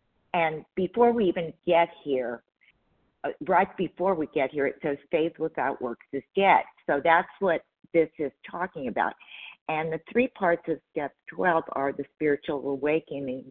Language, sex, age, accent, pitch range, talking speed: English, female, 50-69, American, 145-185 Hz, 160 wpm